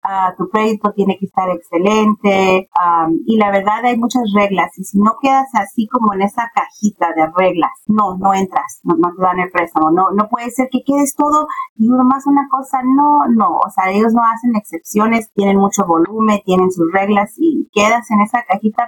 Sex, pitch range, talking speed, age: female, 185-240 Hz, 200 wpm, 30-49